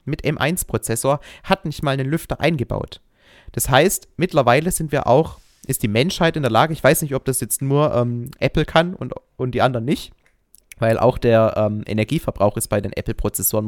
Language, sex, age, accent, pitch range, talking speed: German, male, 30-49, German, 110-140 Hz, 195 wpm